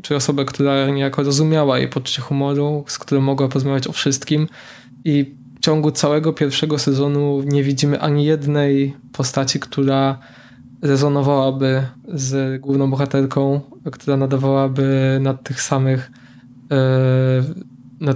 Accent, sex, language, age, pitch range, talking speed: native, male, Polish, 20-39, 130-145 Hz, 120 wpm